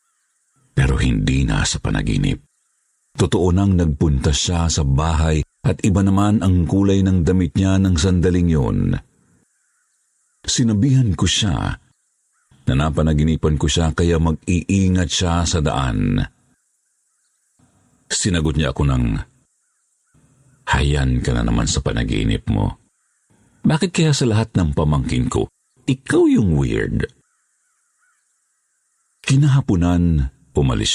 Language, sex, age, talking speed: Filipino, male, 50-69, 110 wpm